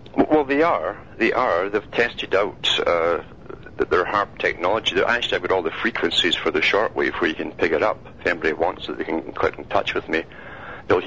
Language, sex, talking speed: English, male, 215 wpm